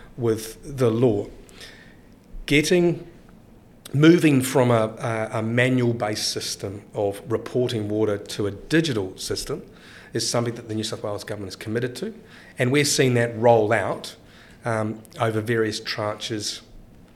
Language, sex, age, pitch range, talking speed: English, male, 40-59, 110-130 Hz, 140 wpm